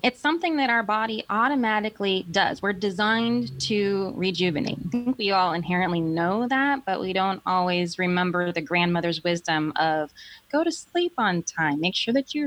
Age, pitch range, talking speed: 20-39, 165-200 Hz, 175 wpm